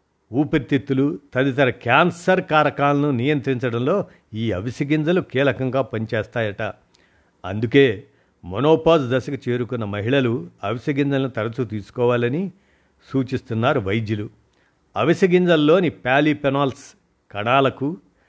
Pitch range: 115-145 Hz